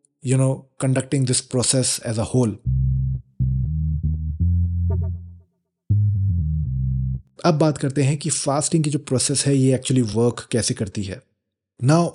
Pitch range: 125-170 Hz